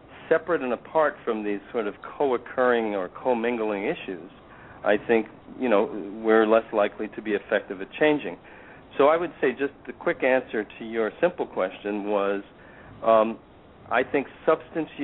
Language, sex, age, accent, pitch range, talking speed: English, male, 50-69, American, 105-130 Hz, 160 wpm